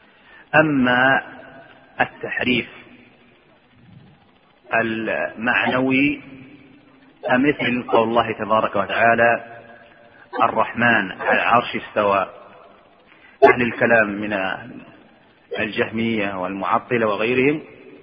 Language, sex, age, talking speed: Arabic, male, 40-59, 60 wpm